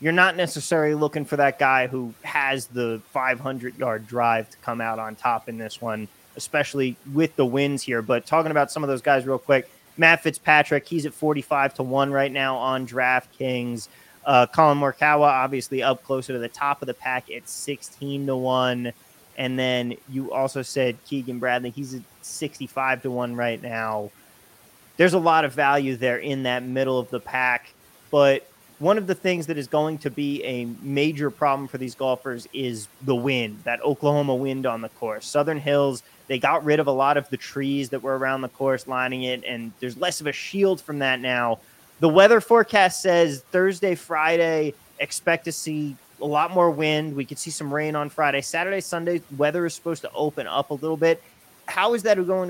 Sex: male